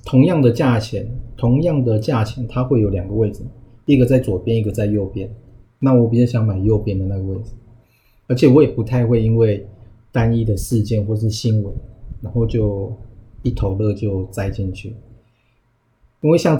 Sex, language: male, Chinese